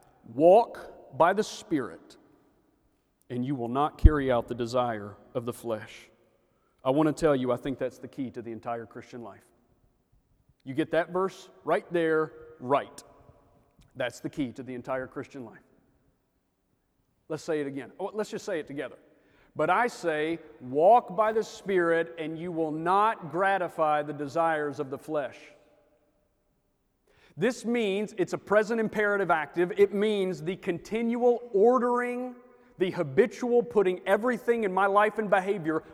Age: 40-59